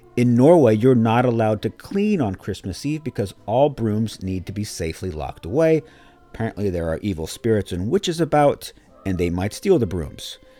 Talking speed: 185 wpm